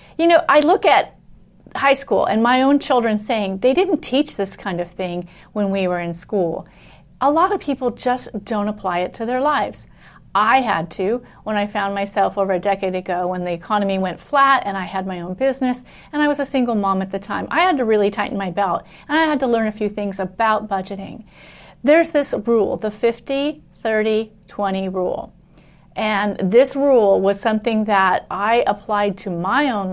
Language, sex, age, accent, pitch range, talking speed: English, female, 40-59, American, 190-245 Hz, 200 wpm